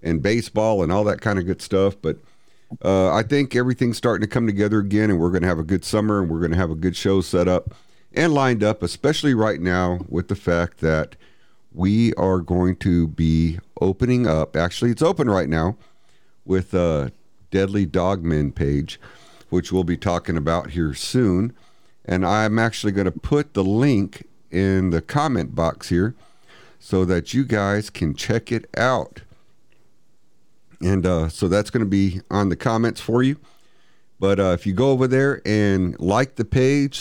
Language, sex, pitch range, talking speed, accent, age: English, male, 90-110 Hz, 185 wpm, American, 50-69